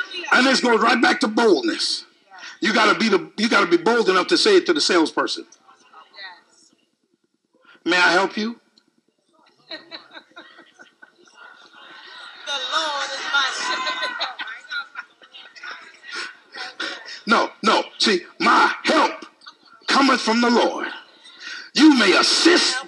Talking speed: 110 wpm